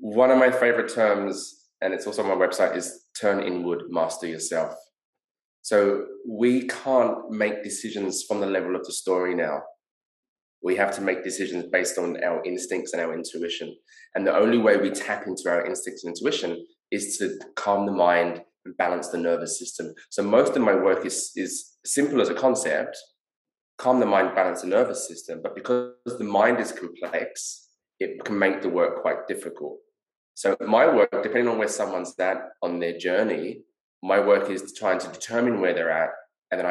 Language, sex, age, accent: English, male, 20-39, British